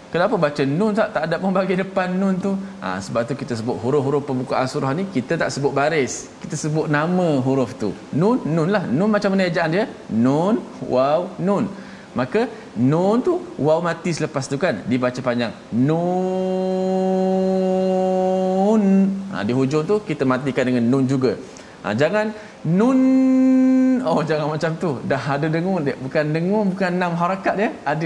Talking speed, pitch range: 165 wpm, 145-200 Hz